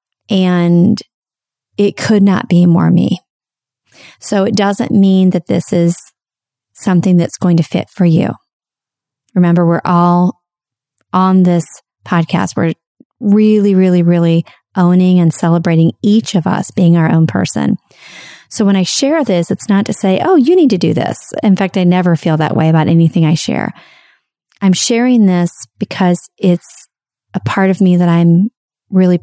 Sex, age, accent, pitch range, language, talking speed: female, 30-49, American, 170-195 Hz, English, 160 wpm